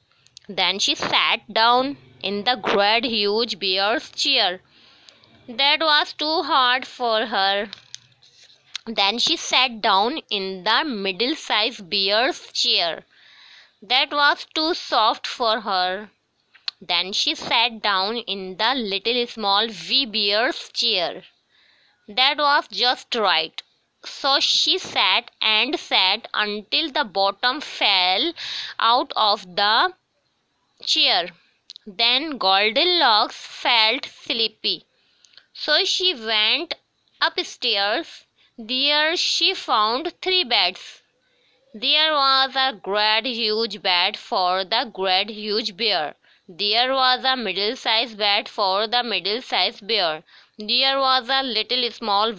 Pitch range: 205-270 Hz